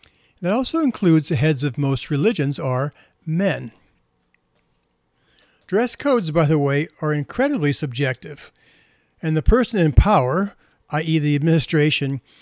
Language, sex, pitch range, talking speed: English, male, 140-175 Hz, 125 wpm